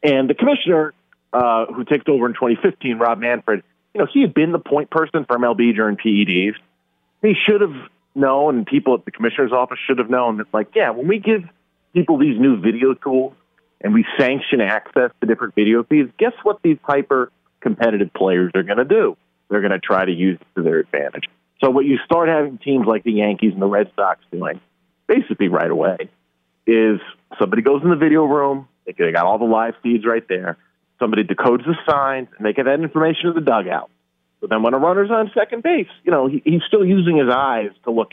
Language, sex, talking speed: English, male, 215 wpm